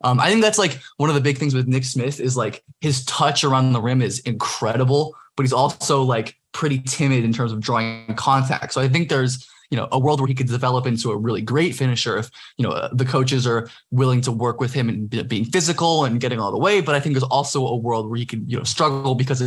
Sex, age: male, 20-39